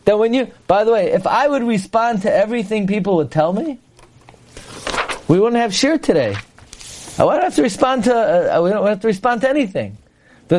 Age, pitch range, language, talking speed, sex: 40-59, 150-235 Hz, English, 195 wpm, male